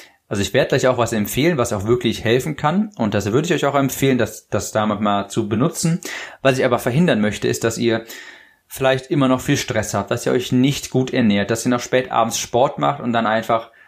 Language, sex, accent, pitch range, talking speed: German, male, German, 110-130 Hz, 235 wpm